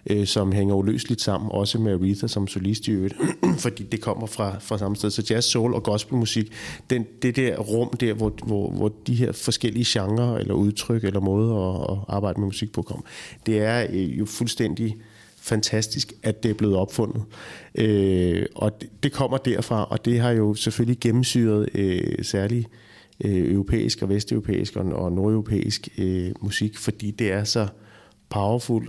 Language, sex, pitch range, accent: Danish, male, 100-115 Hz, native